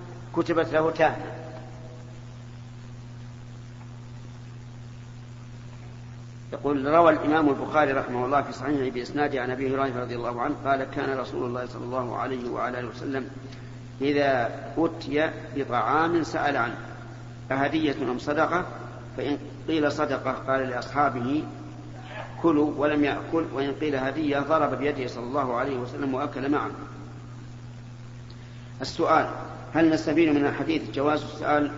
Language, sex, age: Arabic, male, 50-69